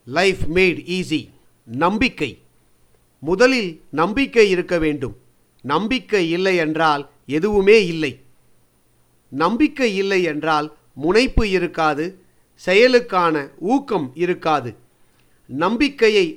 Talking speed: 80 wpm